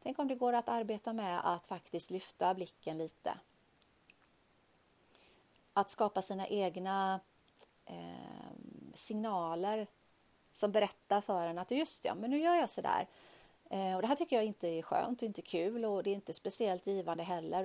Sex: female